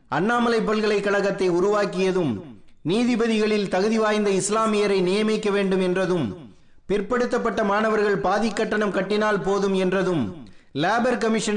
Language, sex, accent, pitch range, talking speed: Tamil, male, native, 195-220 Hz, 55 wpm